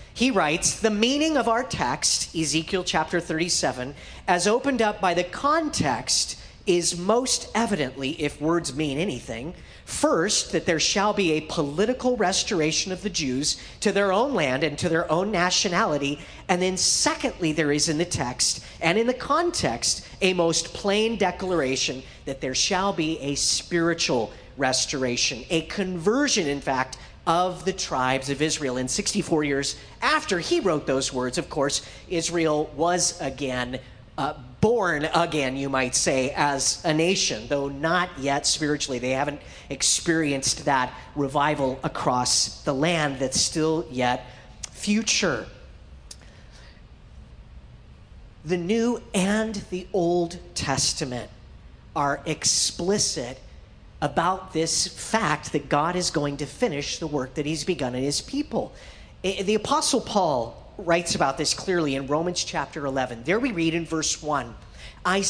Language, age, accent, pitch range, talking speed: English, 40-59, American, 140-190 Hz, 145 wpm